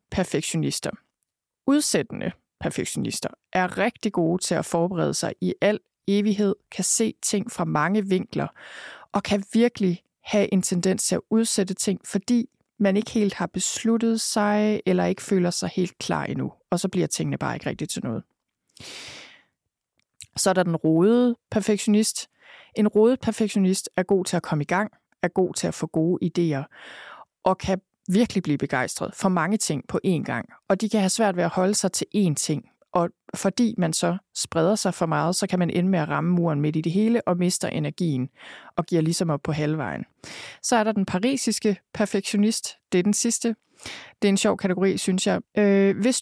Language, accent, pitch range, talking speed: Danish, native, 175-215 Hz, 190 wpm